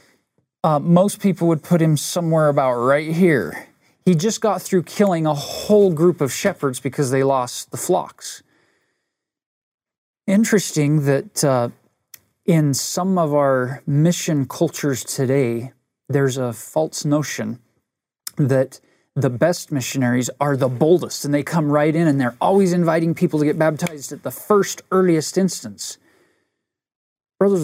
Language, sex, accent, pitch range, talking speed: English, male, American, 130-170 Hz, 140 wpm